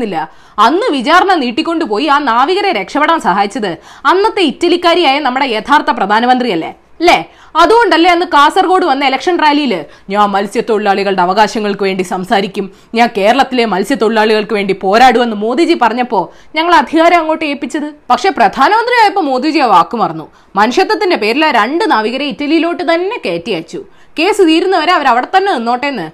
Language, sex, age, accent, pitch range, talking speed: Malayalam, female, 20-39, native, 240-350 Hz, 125 wpm